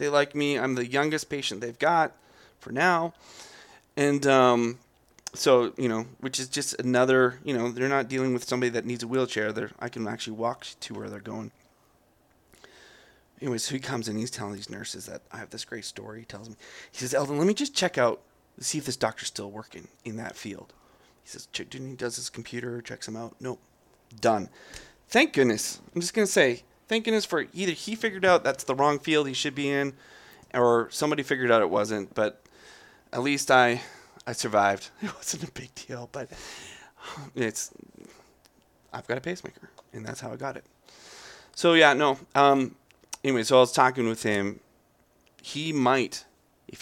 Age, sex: 30-49, male